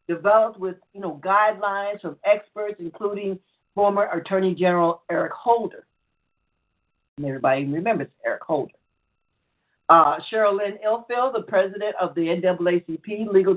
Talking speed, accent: 125 wpm, American